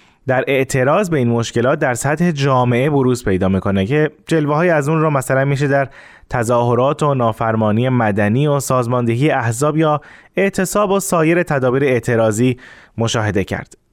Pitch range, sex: 115-155 Hz, male